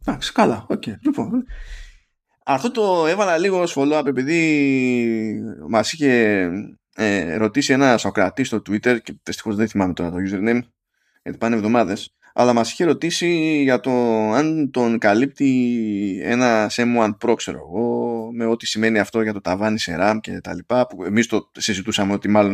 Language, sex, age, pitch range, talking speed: Greek, male, 20-39, 110-140 Hz, 165 wpm